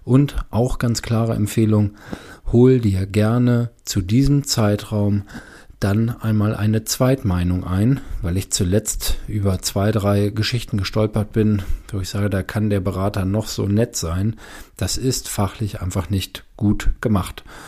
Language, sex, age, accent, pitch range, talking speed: German, male, 40-59, German, 95-110 Hz, 145 wpm